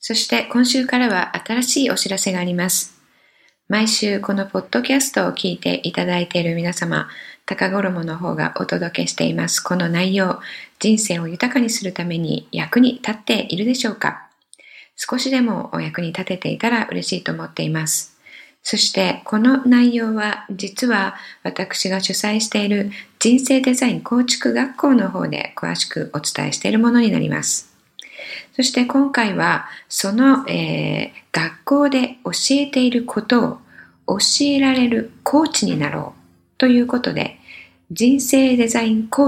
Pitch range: 190-255 Hz